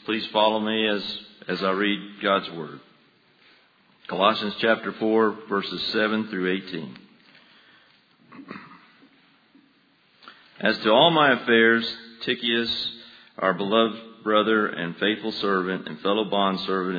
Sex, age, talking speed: male, 50-69, 110 wpm